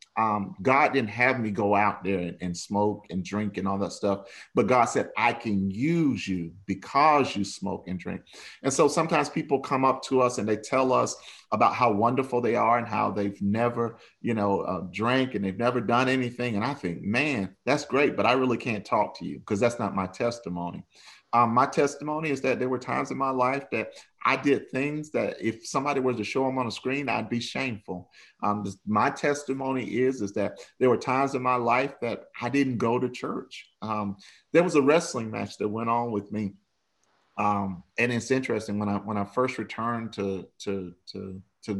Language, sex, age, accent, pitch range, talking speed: English, male, 40-59, American, 100-130 Hz, 210 wpm